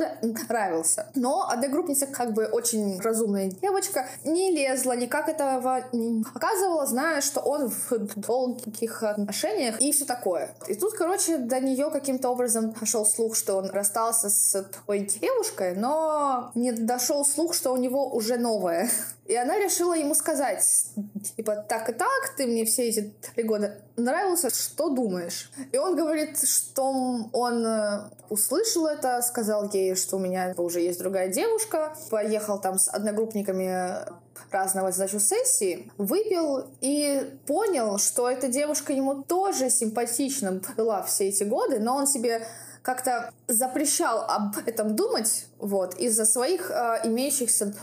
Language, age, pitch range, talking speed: Russian, 20-39, 210-280 Hz, 140 wpm